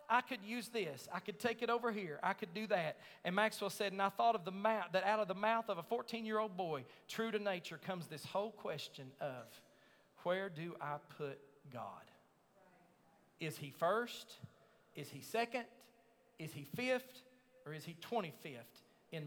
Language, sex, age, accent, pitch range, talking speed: English, male, 40-59, American, 160-215 Hz, 185 wpm